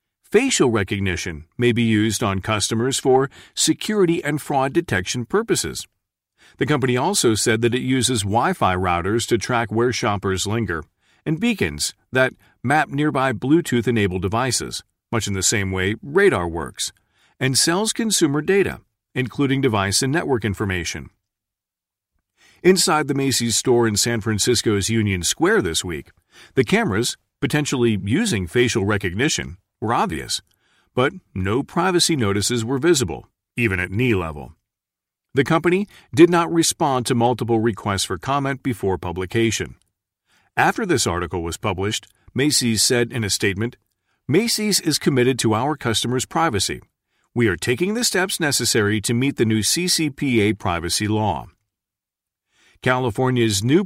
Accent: American